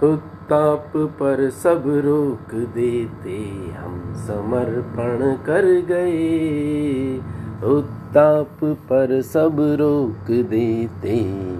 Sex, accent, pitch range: male, native, 115-150 Hz